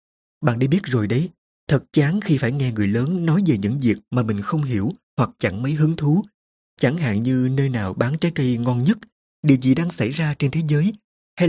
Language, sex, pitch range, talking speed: Vietnamese, male, 110-155 Hz, 230 wpm